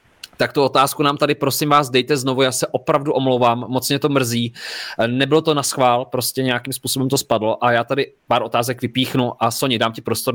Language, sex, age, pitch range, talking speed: Czech, male, 20-39, 110-135 Hz, 215 wpm